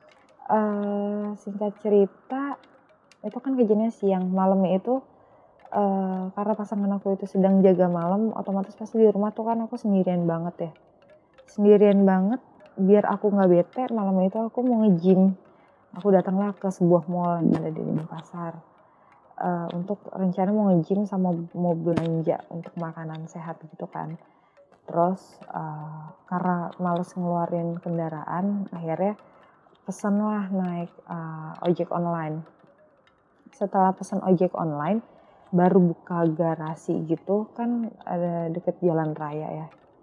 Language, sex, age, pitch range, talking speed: Indonesian, female, 20-39, 170-205 Hz, 125 wpm